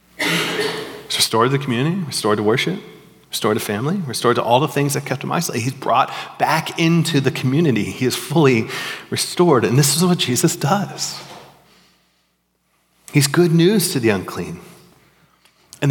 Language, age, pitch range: English, 40-59, 120-175 Hz